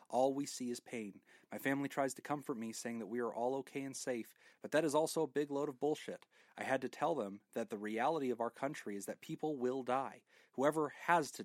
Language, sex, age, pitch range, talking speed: English, male, 30-49, 105-135 Hz, 245 wpm